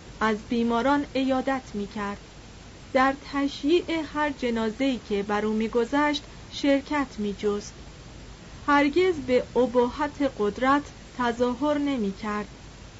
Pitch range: 210-280 Hz